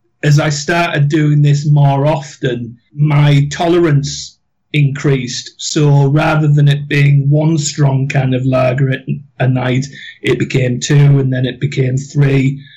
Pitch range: 135-150 Hz